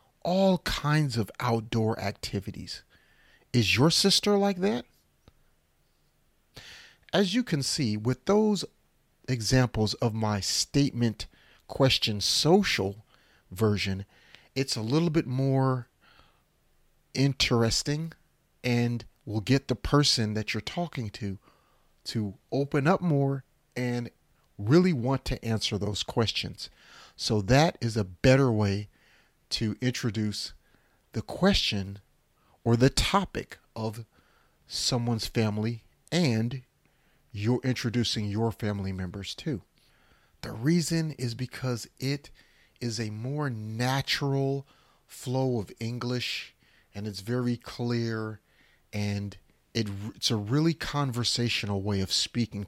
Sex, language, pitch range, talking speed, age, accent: male, English, 105-135 Hz, 110 wpm, 40-59, American